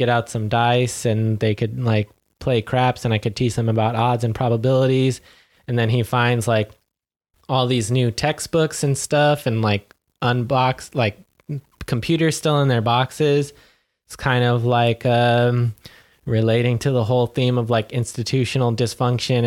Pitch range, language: 115-130 Hz, English